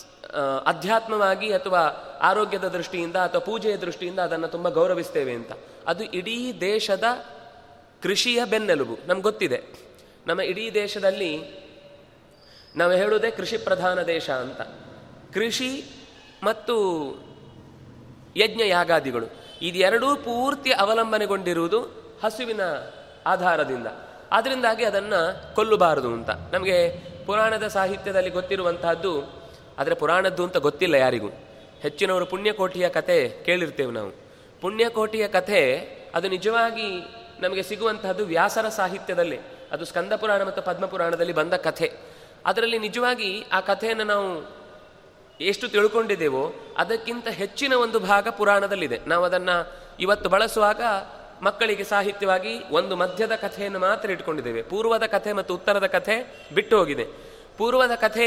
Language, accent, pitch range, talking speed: Kannada, native, 180-230 Hz, 105 wpm